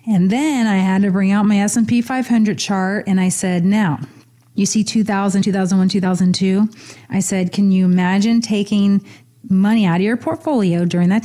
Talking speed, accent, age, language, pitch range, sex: 175 wpm, American, 30-49, English, 190-225 Hz, female